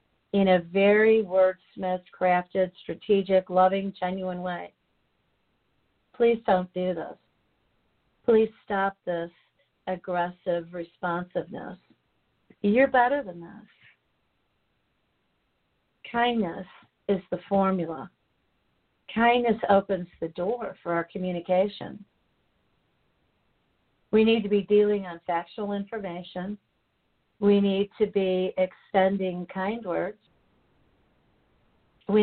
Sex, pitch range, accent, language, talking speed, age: female, 175-205 Hz, American, English, 90 wpm, 50-69